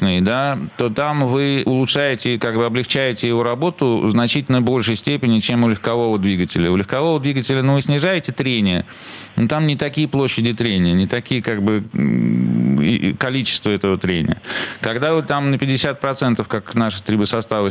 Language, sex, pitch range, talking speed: Russian, male, 100-125 Hz, 150 wpm